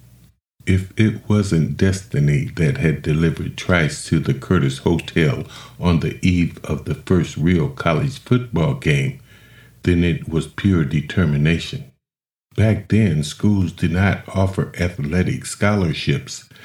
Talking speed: 125 wpm